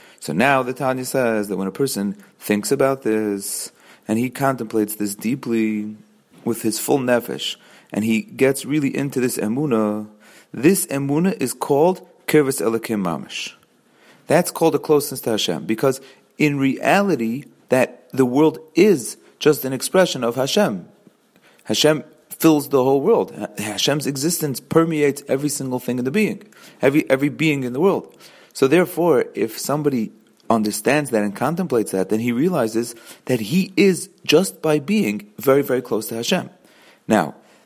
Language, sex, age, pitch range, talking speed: English, male, 30-49, 110-155 Hz, 155 wpm